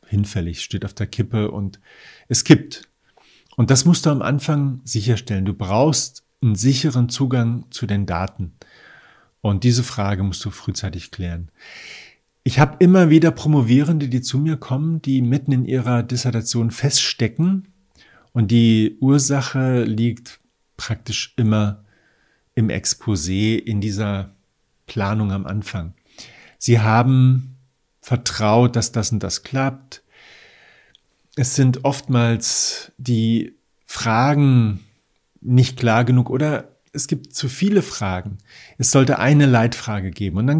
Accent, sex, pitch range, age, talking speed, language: German, male, 105-135 Hz, 50-69, 130 wpm, German